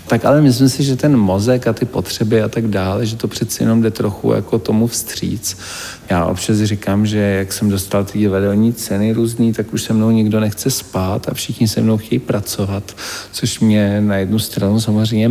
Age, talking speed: 50-69, 205 wpm